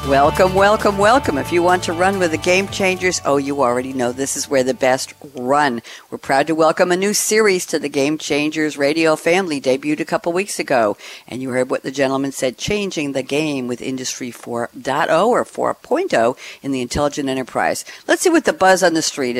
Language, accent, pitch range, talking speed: English, American, 140-195 Hz, 205 wpm